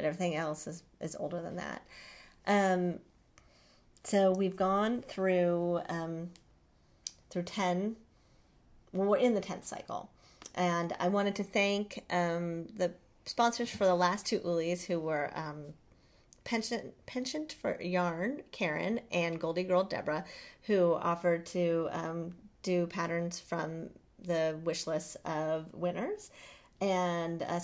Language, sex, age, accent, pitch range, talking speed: English, female, 40-59, American, 165-200 Hz, 130 wpm